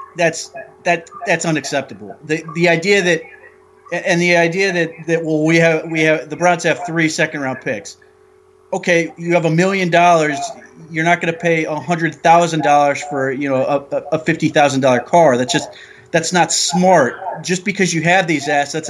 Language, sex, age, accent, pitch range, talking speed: English, male, 30-49, American, 155-185 Hz, 190 wpm